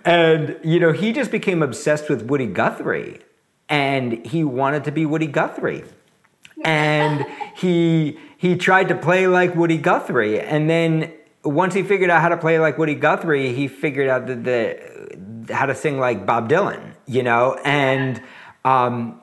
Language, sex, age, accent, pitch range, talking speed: English, male, 50-69, American, 140-180 Hz, 165 wpm